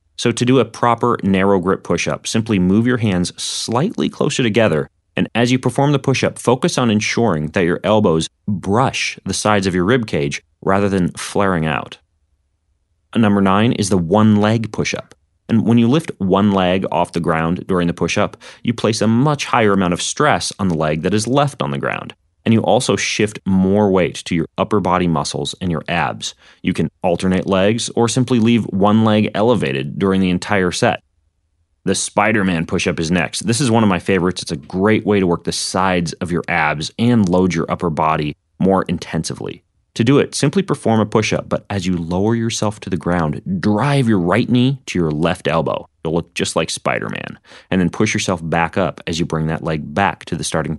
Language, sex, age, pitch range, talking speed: English, male, 30-49, 85-110 Hz, 205 wpm